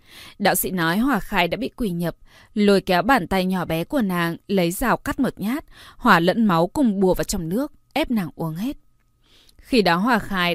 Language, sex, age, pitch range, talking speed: Vietnamese, female, 20-39, 175-230 Hz, 215 wpm